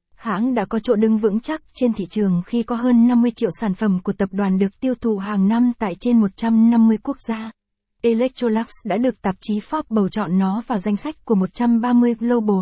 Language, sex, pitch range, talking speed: Vietnamese, female, 205-240 Hz, 215 wpm